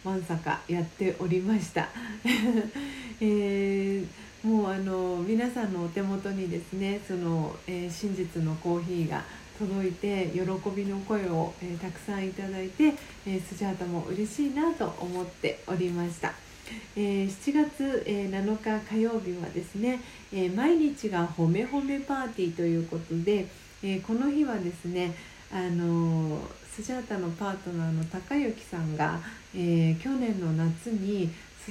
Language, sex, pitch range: Japanese, female, 175-220 Hz